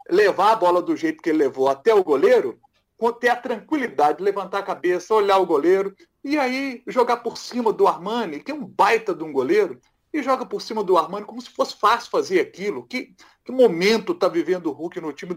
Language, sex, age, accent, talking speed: Portuguese, male, 40-59, Brazilian, 220 wpm